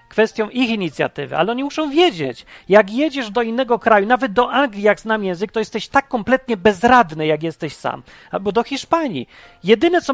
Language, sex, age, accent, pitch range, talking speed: Polish, male, 40-59, native, 205-265 Hz, 185 wpm